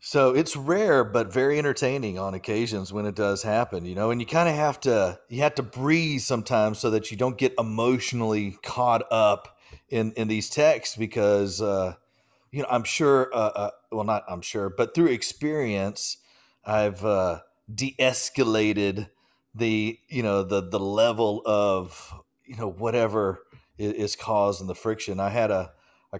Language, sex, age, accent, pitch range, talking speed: English, male, 40-59, American, 100-120 Hz, 165 wpm